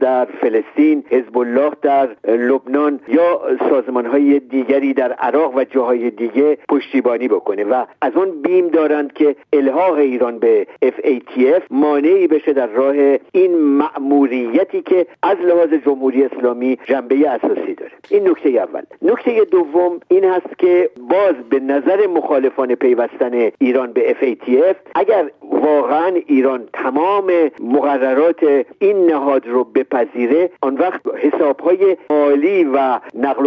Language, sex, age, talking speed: Persian, male, 50-69, 125 wpm